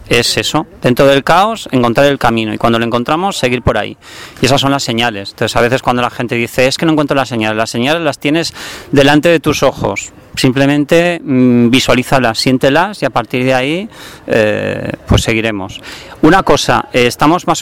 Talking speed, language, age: 195 wpm, Spanish, 40-59